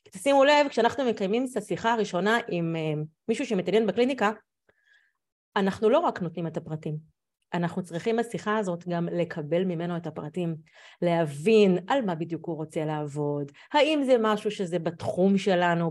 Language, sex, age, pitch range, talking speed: Hebrew, female, 30-49, 160-215 Hz, 145 wpm